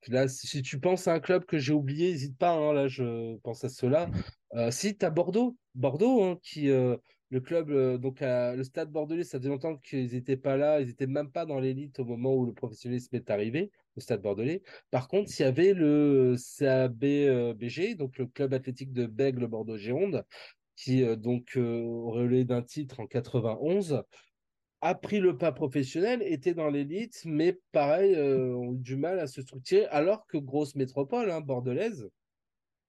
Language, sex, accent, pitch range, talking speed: French, male, French, 125-150 Hz, 195 wpm